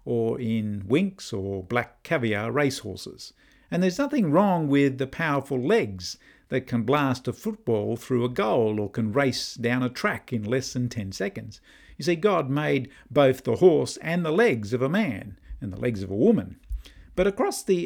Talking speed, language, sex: 190 wpm, English, male